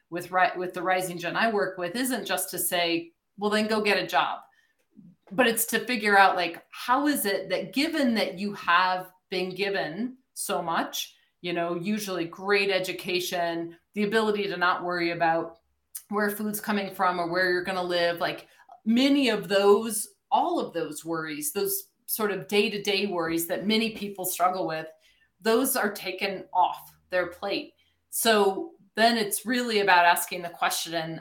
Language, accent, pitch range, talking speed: English, American, 175-210 Hz, 170 wpm